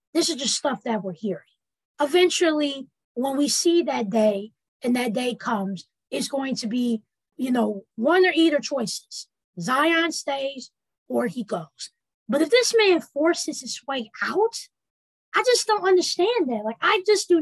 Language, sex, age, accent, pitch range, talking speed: English, female, 20-39, American, 230-335 Hz, 170 wpm